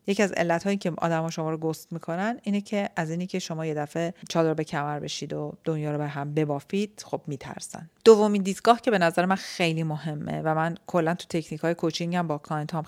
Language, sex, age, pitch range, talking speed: Persian, female, 40-59, 150-185 Hz, 230 wpm